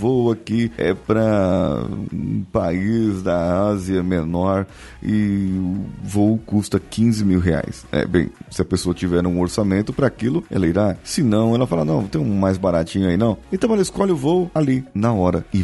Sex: male